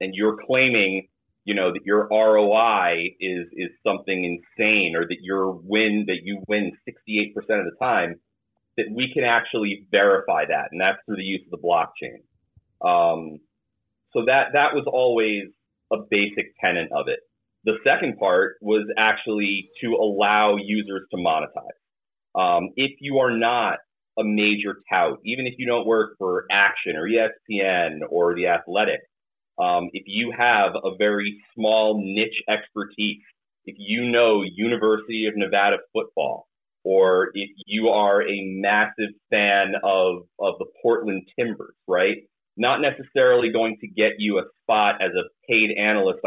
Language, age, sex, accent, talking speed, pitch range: English, 30-49, male, American, 155 wpm, 100-120 Hz